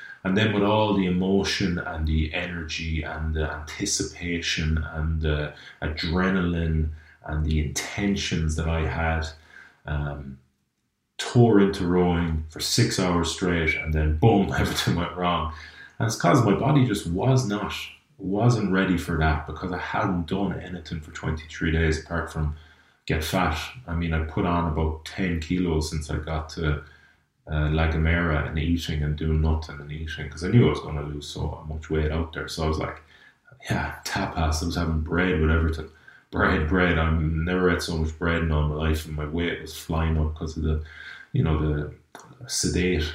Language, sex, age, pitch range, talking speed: English, male, 30-49, 80-90 Hz, 180 wpm